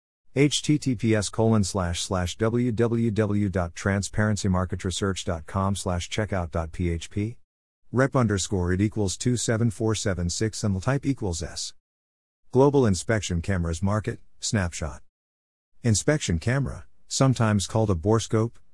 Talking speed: 85 wpm